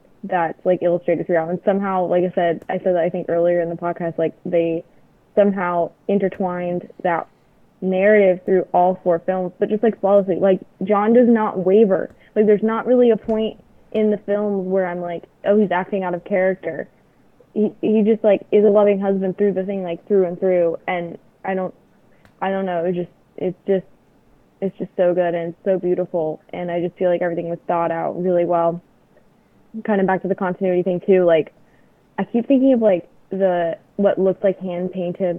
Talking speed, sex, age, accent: 200 wpm, female, 10-29, American